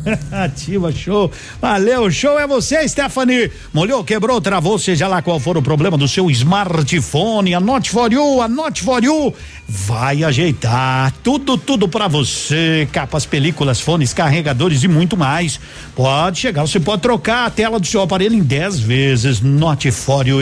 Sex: male